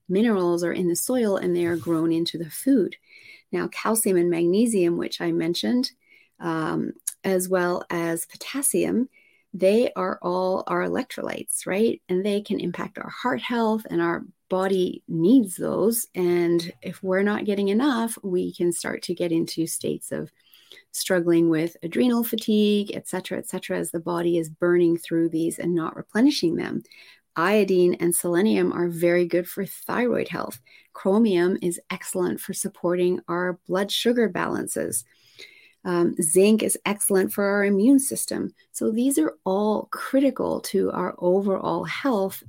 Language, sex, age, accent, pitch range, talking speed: English, female, 30-49, American, 170-205 Hz, 155 wpm